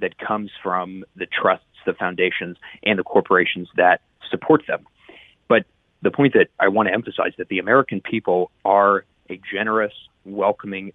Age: 30-49